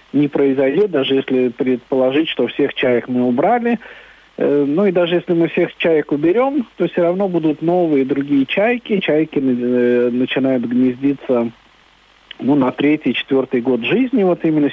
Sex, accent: male, native